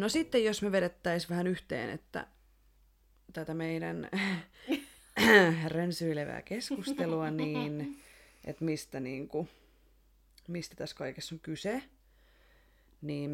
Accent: native